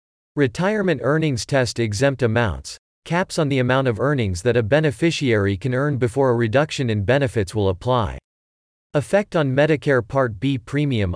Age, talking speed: 40-59, 150 wpm